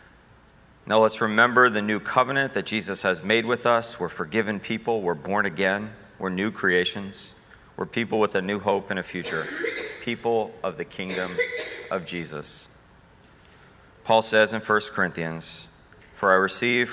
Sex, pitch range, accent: male, 90-110 Hz, American